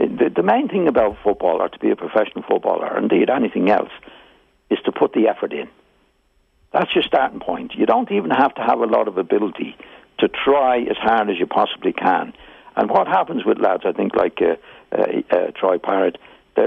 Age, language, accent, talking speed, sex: 60-79, English, British, 200 wpm, male